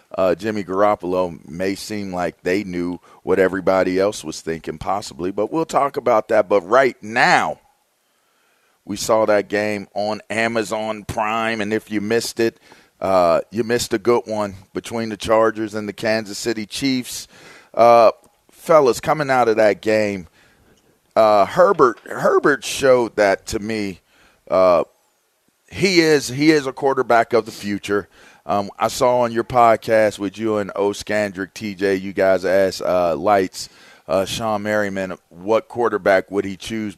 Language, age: English, 40-59